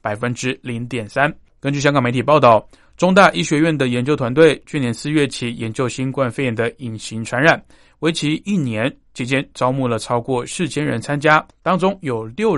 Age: 20-39